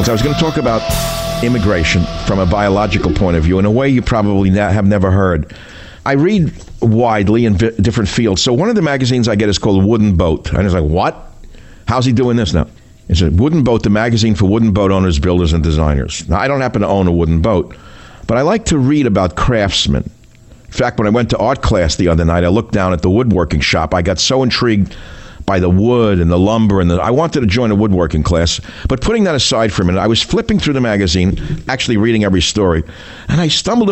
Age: 60-79